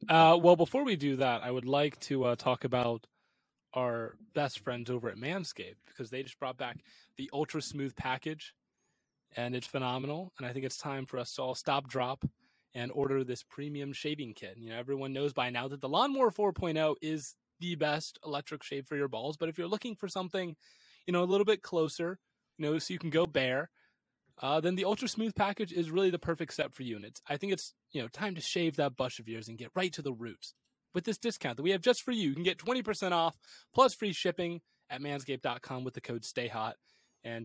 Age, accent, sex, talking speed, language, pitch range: 20-39, American, male, 225 wpm, English, 125-175 Hz